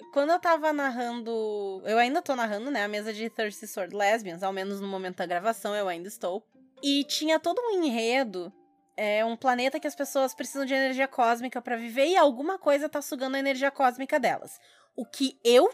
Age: 20-39